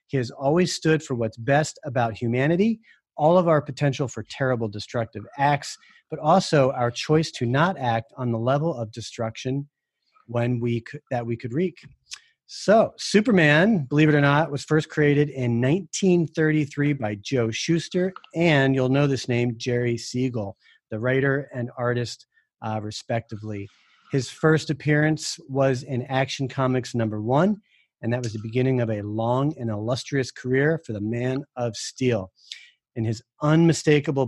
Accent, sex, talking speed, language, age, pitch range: American, male, 160 wpm, English, 40-59, 115-150 Hz